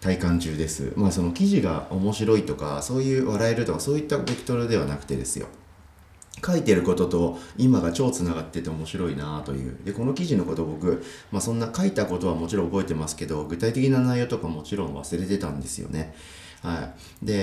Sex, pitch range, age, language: male, 80-110 Hz, 40-59, Japanese